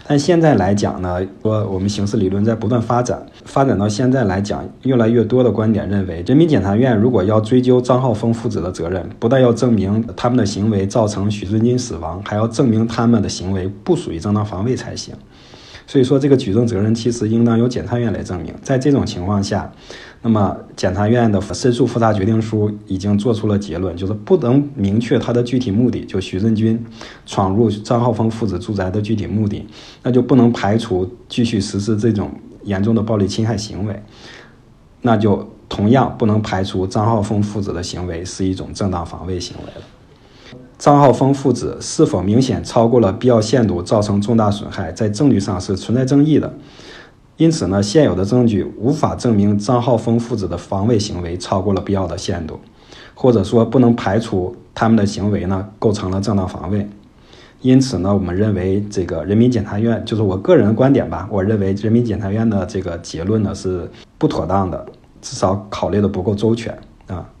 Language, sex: Chinese, male